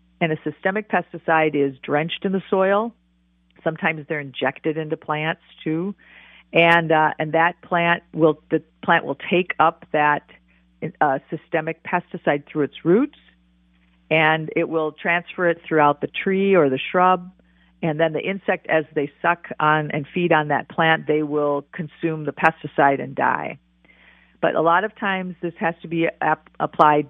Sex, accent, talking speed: female, American, 165 wpm